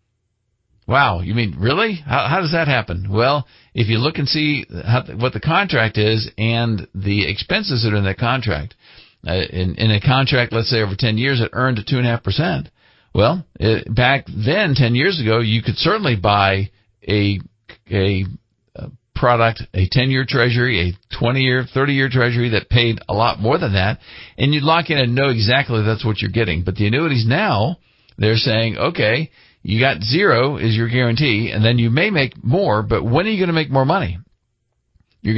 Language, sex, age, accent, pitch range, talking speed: English, male, 50-69, American, 110-135 Hz, 185 wpm